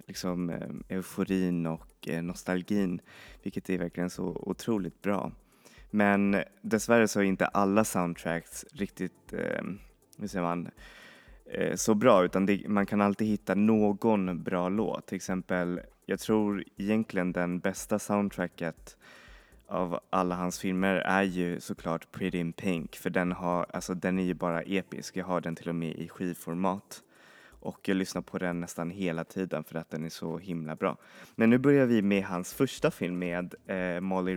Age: 20-39